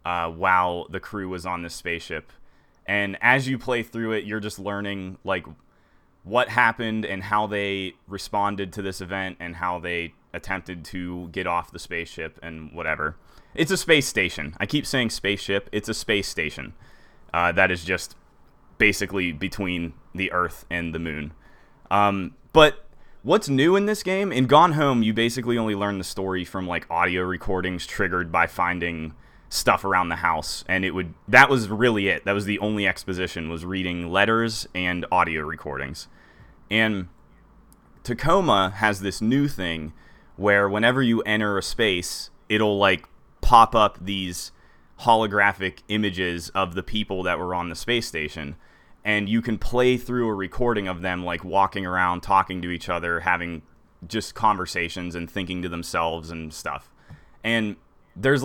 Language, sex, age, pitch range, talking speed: English, male, 20-39, 85-105 Hz, 165 wpm